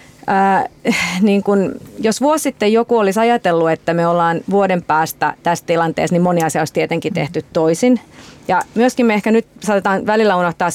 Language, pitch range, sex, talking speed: Finnish, 170-210 Hz, female, 175 wpm